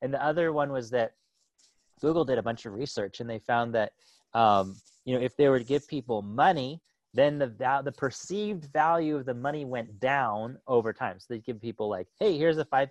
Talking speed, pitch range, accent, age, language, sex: 220 wpm, 125-160 Hz, American, 30-49, English, male